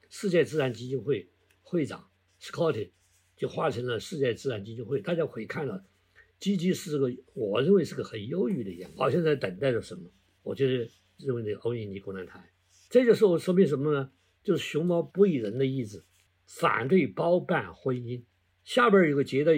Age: 50-69